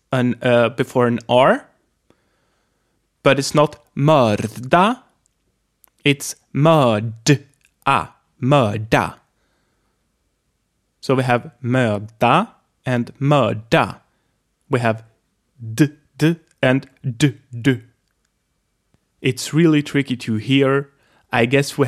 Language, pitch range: English, 115-145 Hz